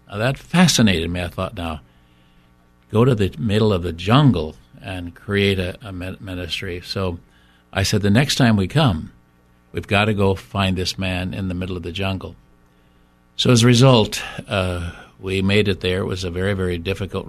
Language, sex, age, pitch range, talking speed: English, male, 60-79, 80-110 Hz, 185 wpm